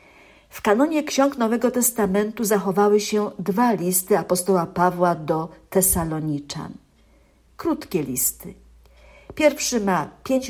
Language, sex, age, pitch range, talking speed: Polish, female, 50-69, 175-225 Hz, 105 wpm